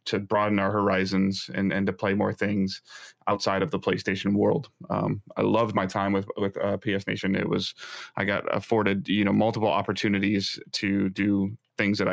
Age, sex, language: 20-39, male, English